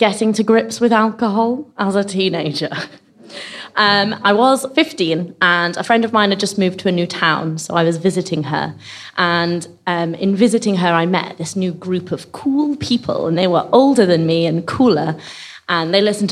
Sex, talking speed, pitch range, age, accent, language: female, 195 wpm, 175-225 Hz, 20-39, British, English